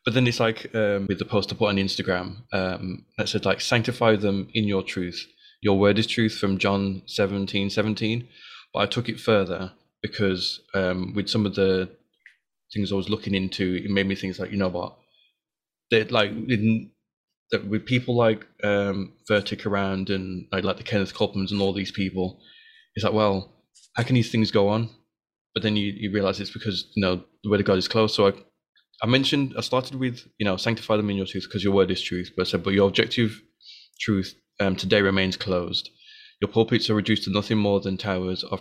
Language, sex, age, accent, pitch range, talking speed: English, male, 20-39, British, 95-110 Hz, 215 wpm